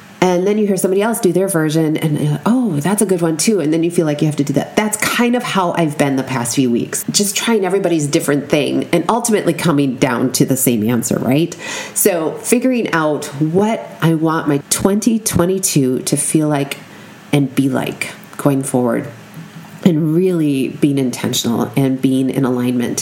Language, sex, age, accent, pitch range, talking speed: English, female, 30-49, American, 140-195 Hz, 200 wpm